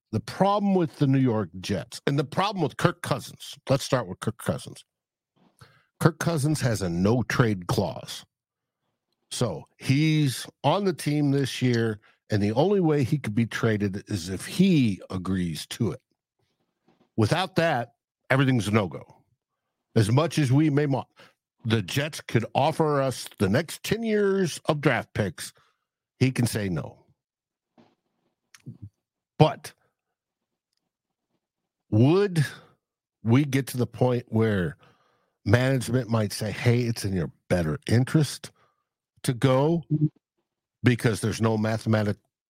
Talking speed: 135 wpm